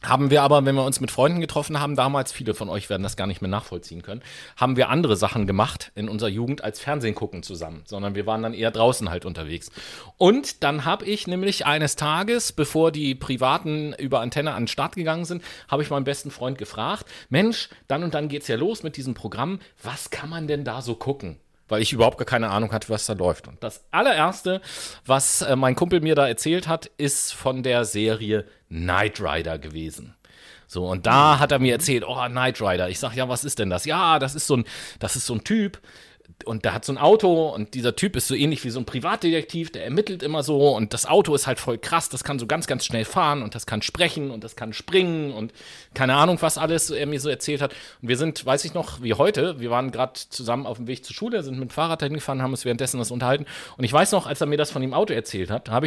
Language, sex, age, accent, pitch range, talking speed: German, male, 40-59, German, 115-150 Hz, 245 wpm